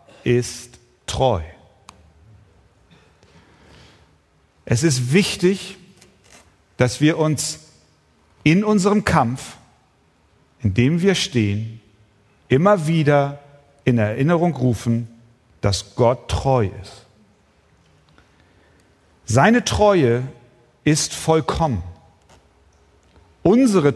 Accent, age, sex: German, 40-59, male